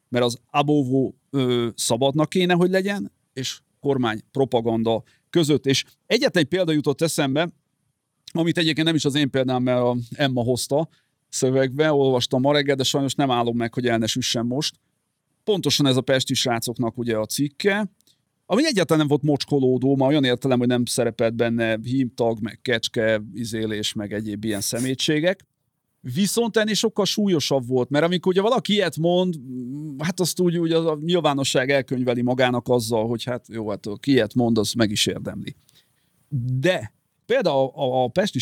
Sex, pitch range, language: male, 120-150 Hz, Hungarian